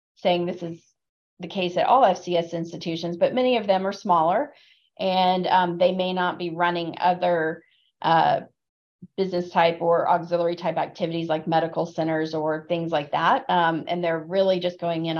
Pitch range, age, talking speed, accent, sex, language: 165-180 Hz, 30-49, 175 wpm, American, female, English